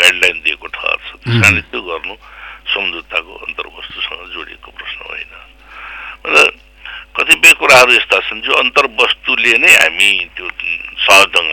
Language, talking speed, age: English, 100 wpm, 60-79